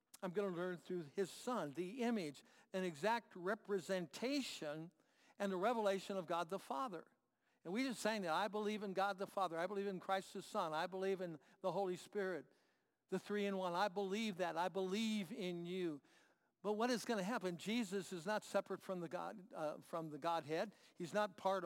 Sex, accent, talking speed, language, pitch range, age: male, American, 195 wpm, English, 175-215 Hz, 60-79